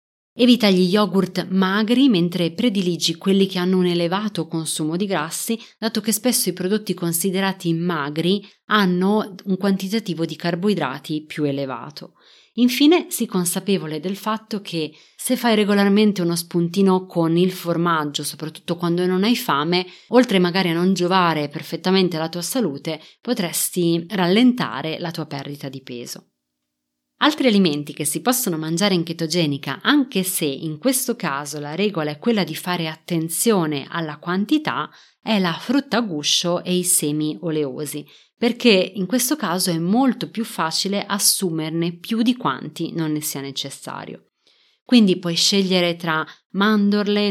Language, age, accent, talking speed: Italian, 30-49, native, 145 wpm